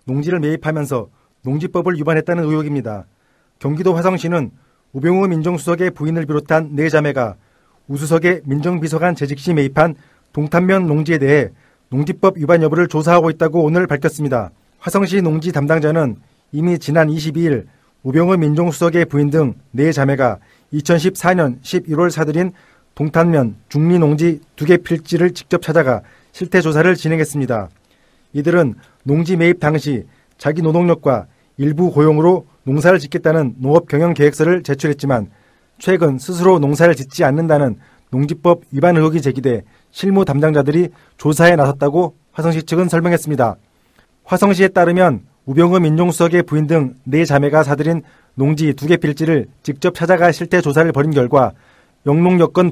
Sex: male